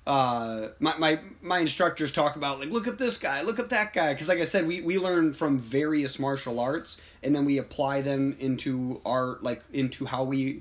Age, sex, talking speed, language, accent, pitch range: 20-39, male, 215 wpm, English, American, 120-150 Hz